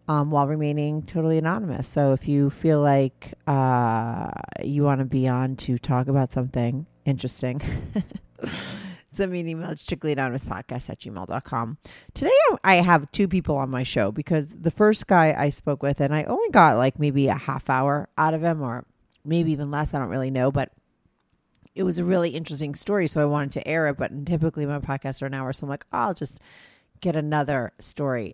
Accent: American